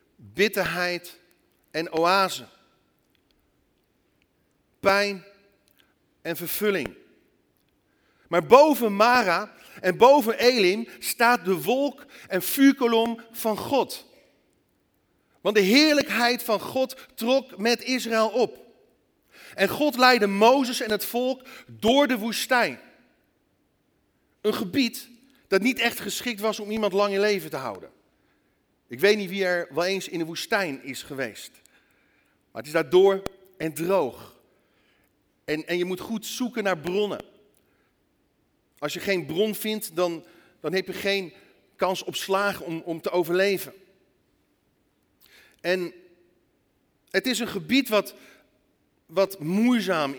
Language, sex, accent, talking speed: Dutch, male, Dutch, 125 wpm